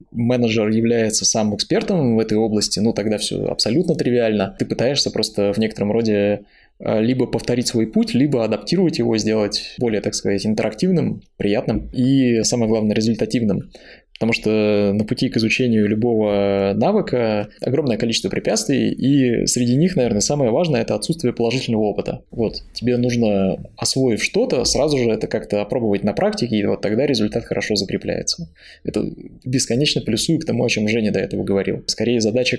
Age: 20-39